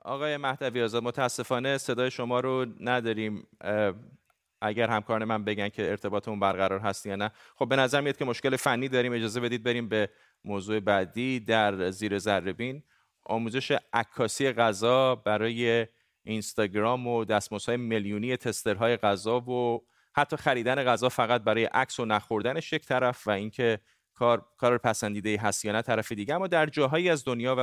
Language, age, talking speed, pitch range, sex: Persian, 30-49, 155 wpm, 105-130 Hz, male